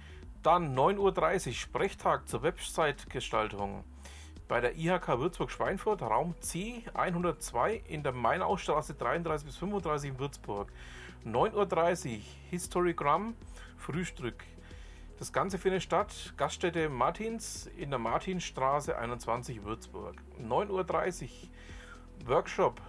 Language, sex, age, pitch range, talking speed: German, male, 40-59, 105-175 Hz, 100 wpm